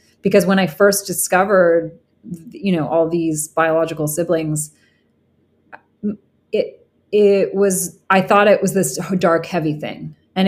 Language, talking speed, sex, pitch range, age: English, 130 wpm, female, 165-195 Hz, 30-49